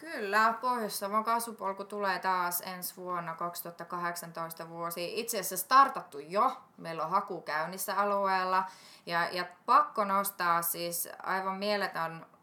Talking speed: 115 wpm